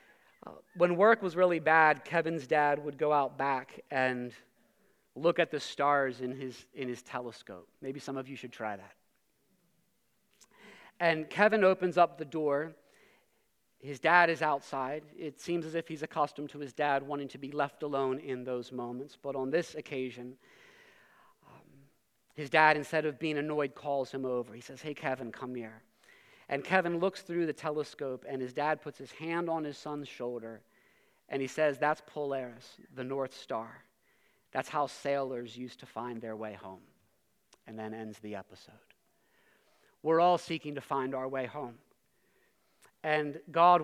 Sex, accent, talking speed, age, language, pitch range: male, American, 170 wpm, 40-59, English, 130-160 Hz